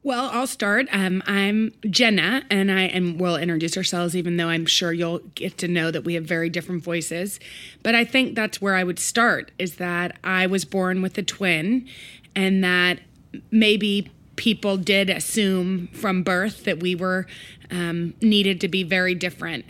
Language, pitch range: English, 175-200 Hz